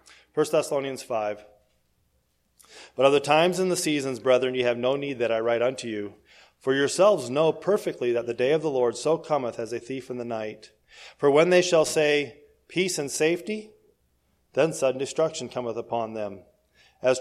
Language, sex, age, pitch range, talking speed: English, male, 40-59, 120-165 Hz, 185 wpm